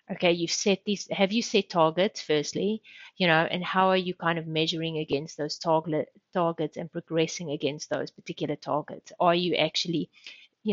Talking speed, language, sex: 180 wpm, English, female